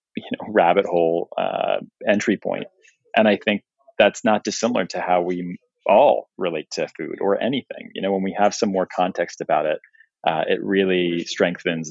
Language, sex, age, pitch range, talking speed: English, male, 30-49, 85-105 Hz, 180 wpm